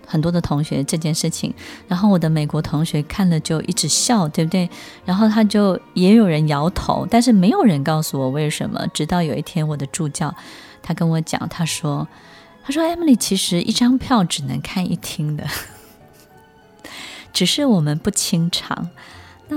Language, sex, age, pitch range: Chinese, female, 20-39, 155-215 Hz